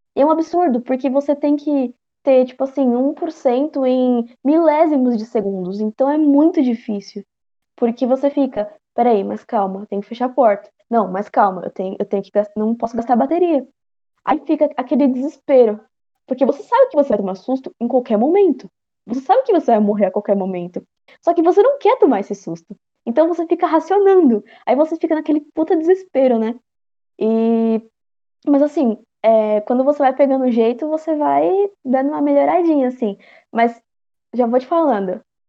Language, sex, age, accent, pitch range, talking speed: Portuguese, female, 10-29, Brazilian, 235-340 Hz, 180 wpm